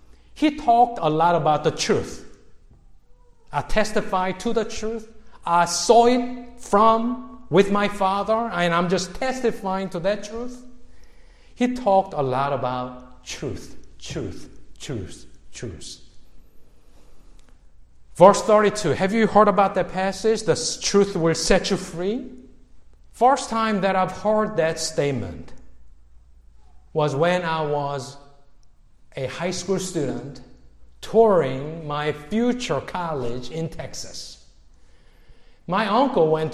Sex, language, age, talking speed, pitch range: male, English, 50-69, 120 wpm, 135-215 Hz